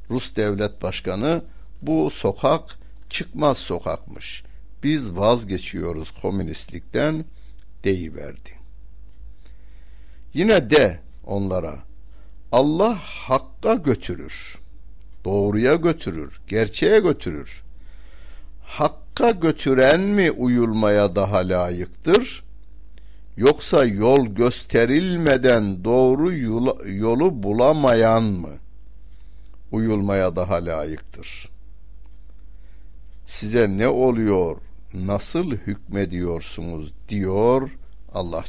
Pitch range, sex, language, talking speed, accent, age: 90-120 Hz, male, Turkish, 70 wpm, native, 60-79